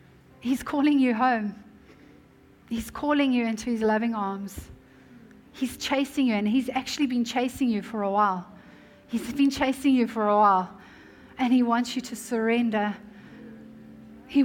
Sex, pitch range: female, 220-260 Hz